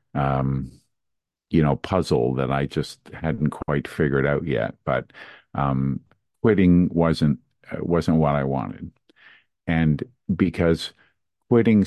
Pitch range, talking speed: 70-85 Hz, 115 wpm